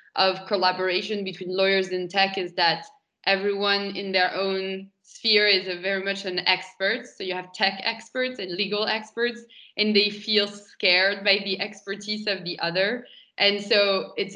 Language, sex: English, female